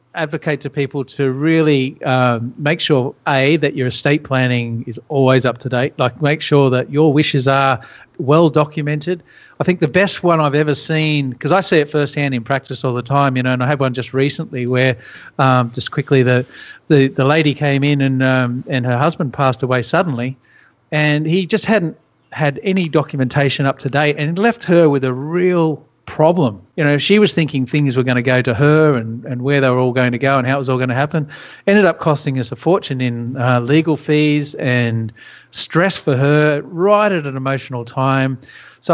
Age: 40-59